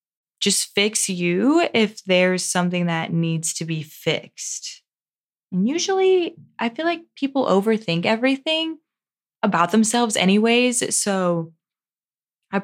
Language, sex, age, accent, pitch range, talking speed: English, female, 20-39, American, 160-205 Hz, 115 wpm